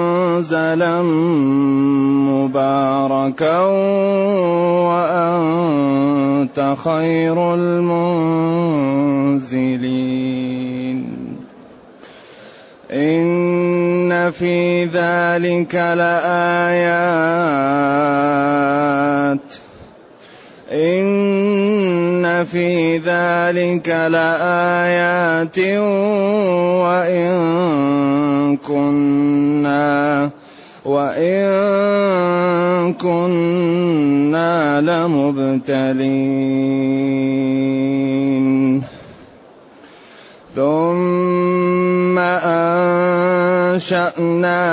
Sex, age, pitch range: male, 30-49, 145-180 Hz